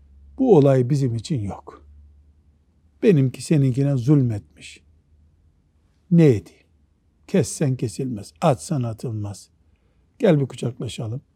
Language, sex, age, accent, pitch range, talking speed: Turkish, male, 60-79, native, 120-185 Hz, 100 wpm